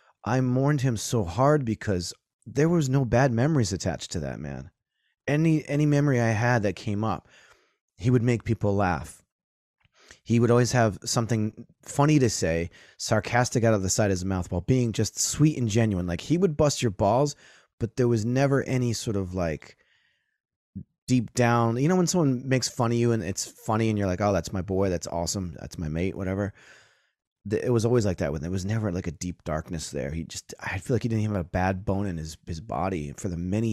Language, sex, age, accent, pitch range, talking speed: English, male, 30-49, American, 90-120 Hz, 215 wpm